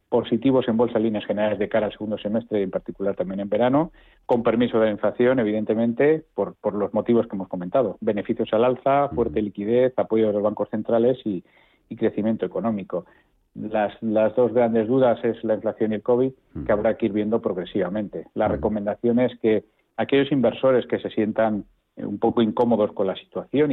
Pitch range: 100-115 Hz